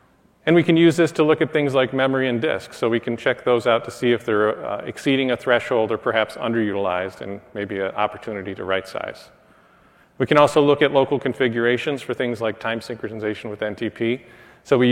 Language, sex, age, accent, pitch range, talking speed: English, male, 40-59, American, 115-145 Hz, 210 wpm